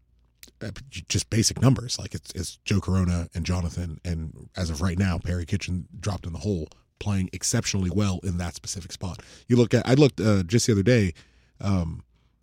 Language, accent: English, American